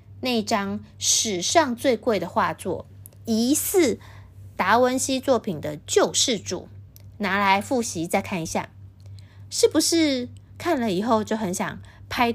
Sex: female